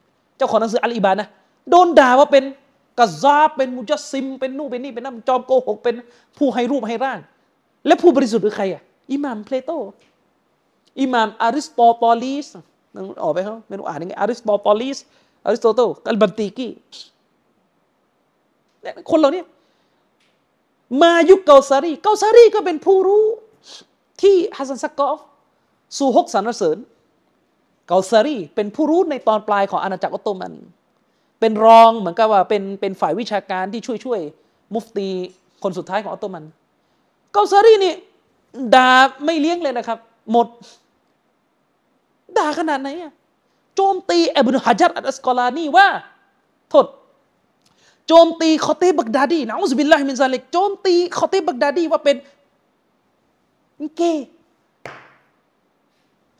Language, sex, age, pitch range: Thai, male, 30-49, 225-325 Hz